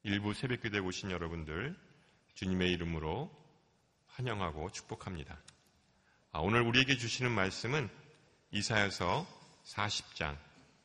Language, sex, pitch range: Korean, male, 90-120 Hz